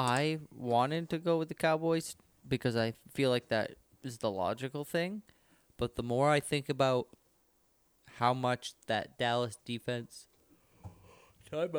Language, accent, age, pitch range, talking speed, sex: English, American, 20-39, 115-160 Hz, 145 wpm, male